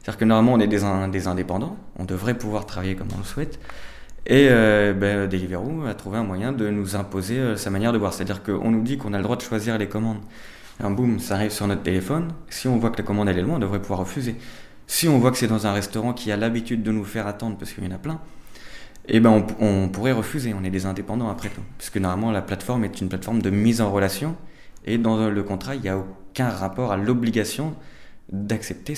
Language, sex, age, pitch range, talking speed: French, male, 20-39, 100-125 Hz, 245 wpm